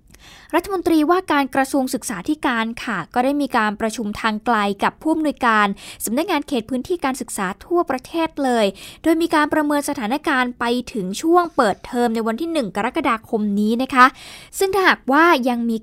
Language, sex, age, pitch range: Thai, female, 10-29, 215-290 Hz